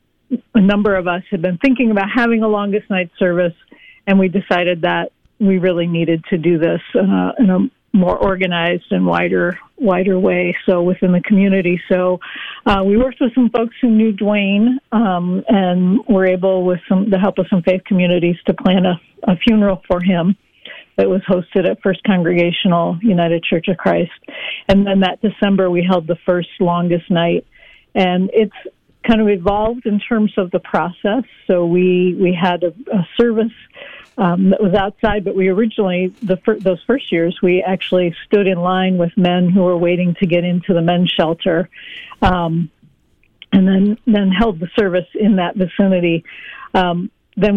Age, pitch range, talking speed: 50-69, 180-210 Hz, 180 wpm